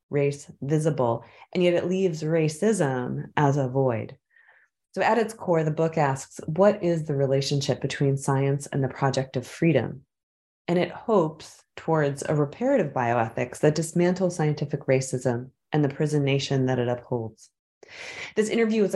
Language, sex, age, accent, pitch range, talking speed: English, female, 30-49, American, 150-185 Hz, 155 wpm